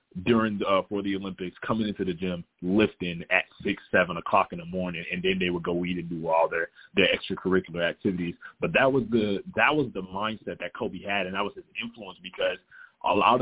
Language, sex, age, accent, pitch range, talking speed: English, male, 20-39, American, 95-115 Hz, 225 wpm